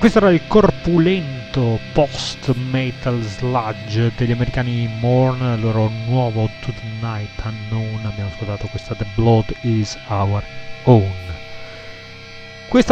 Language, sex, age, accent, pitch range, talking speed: Italian, male, 30-49, native, 110-140 Hz, 115 wpm